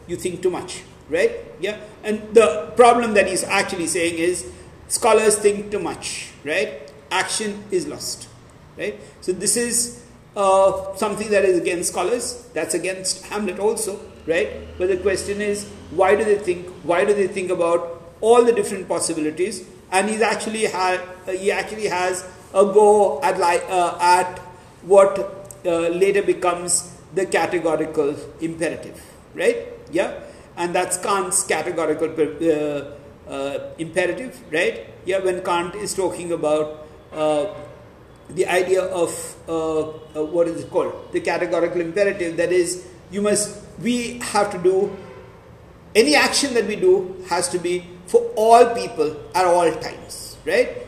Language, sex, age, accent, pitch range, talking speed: English, male, 50-69, Indian, 175-210 Hz, 145 wpm